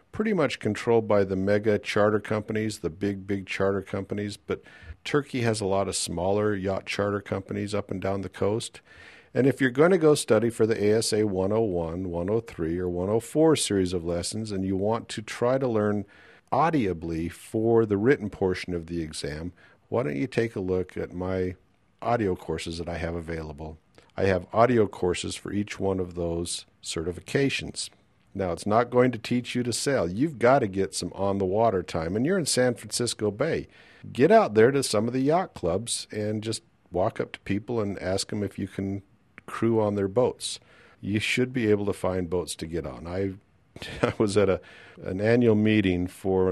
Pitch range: 90-110 Hz